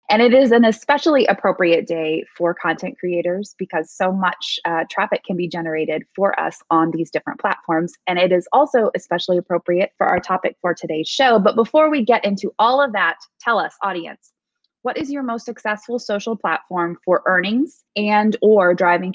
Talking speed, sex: 185 wpm, female